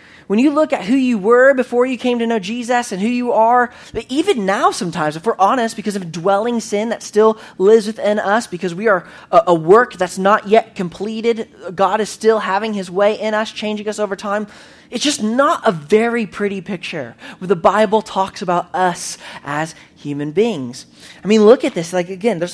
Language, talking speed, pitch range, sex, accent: English, 210 wpm, 175-235 Hz, male, American